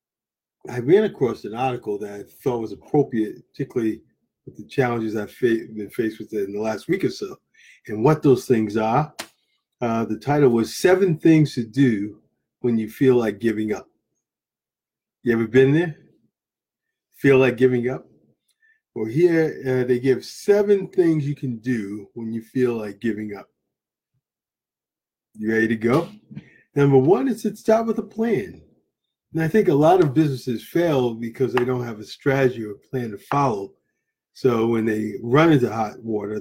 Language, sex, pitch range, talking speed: English, male, 110-150 Hz, 170 wpm